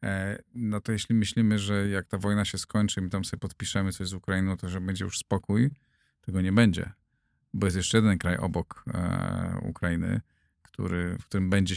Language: Polish